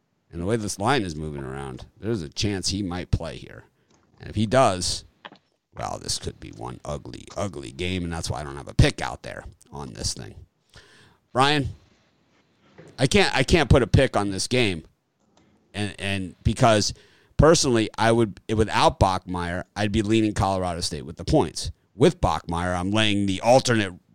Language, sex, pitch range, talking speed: English, male, 85-110 Hz, 180 wpm